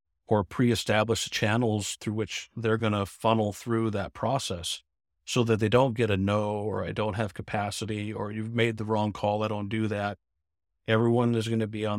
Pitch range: 95-115 Hz